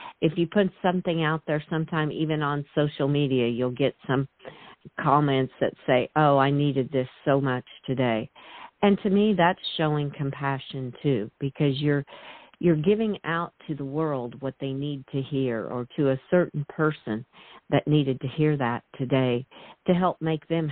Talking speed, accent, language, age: 170 wpm, American, English, 50-69